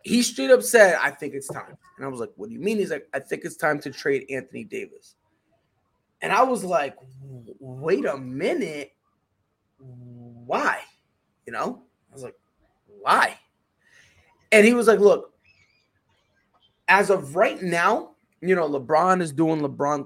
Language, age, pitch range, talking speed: English, 20-39, 160-245 Hz, 165 wpm